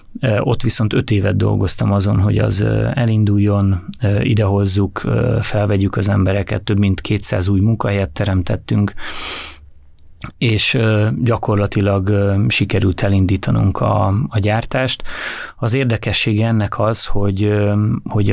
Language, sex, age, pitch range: Hungarian, male, 30-49, 100-115 Hz